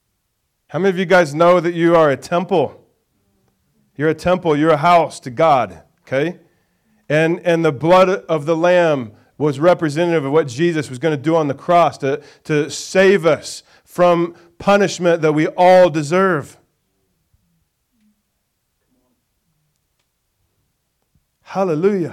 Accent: American